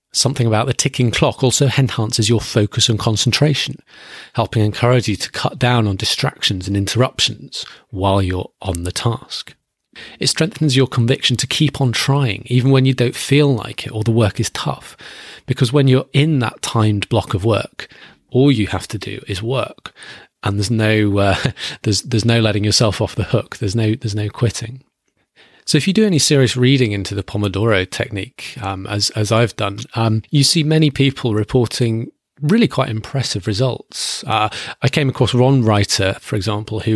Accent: British